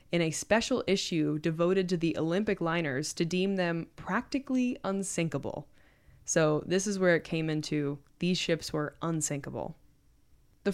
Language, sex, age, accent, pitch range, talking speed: English, female, 20-39, American, 165-220 Hz, 145 wpm